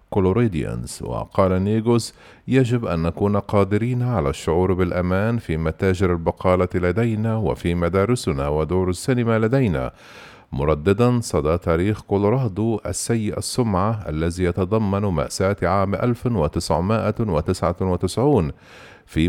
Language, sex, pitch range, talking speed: Arabic, male, 90-115 Hz, 95 wpm